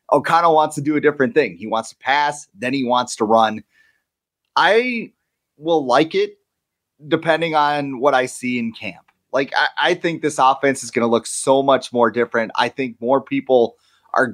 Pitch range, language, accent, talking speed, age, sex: 125-160 Hz, English, American, 195 wpm, 30-49, male